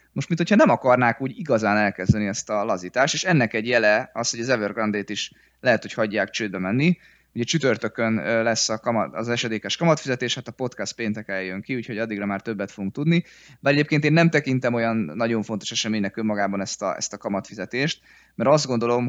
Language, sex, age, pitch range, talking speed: Hungarian, male, 20-39, 100-125 Hz, 180 wpm